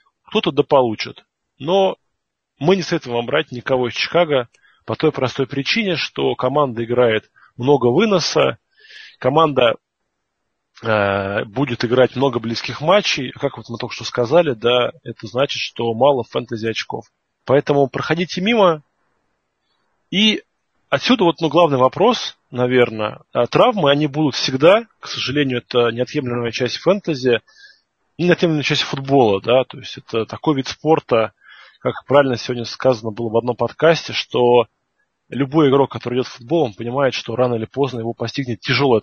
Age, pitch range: 20-39, 120-150 Hz